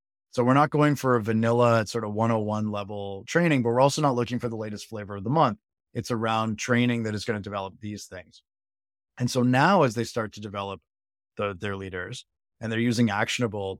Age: 20-39